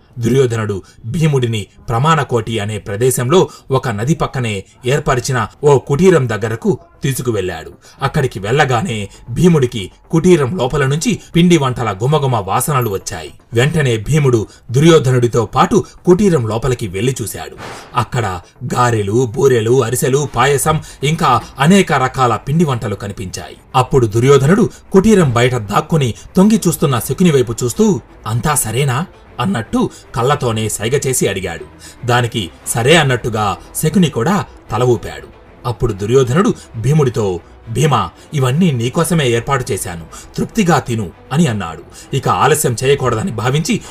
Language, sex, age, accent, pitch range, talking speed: Telugu, male, 30-49, native, 115-155 Hz, 110 wpm